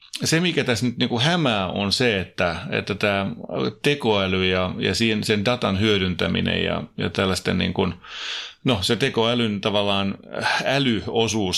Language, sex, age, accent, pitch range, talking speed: Finnish, male, 30-49, native, 95-115 Hz, 145 wpm